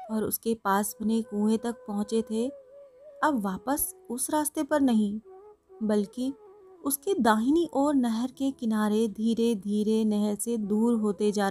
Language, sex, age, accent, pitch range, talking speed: Hindi, female, 30-49, native, 215-280 Hz, 145 wpm